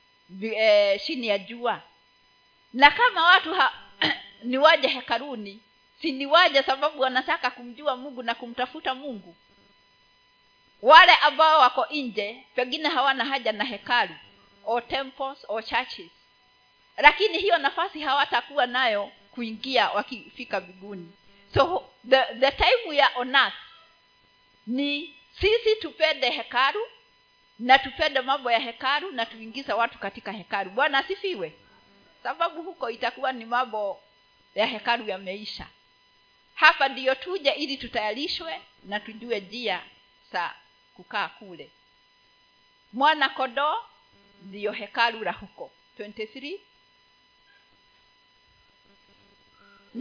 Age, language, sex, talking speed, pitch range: 40-59, Swahili, female, 115 wpm, 225-305 Hz